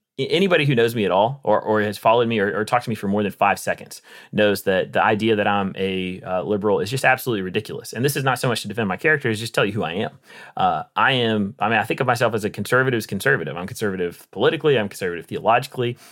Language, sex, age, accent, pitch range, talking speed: English, male, 30-49, American, 100-125 Hz, 260 wpm